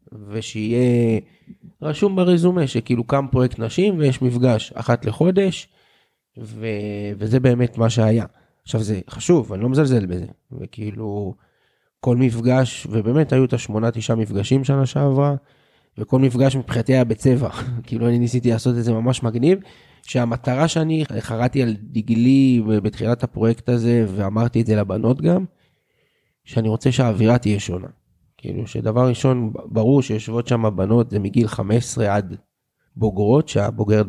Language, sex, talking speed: Hebrew, male, 135 wpm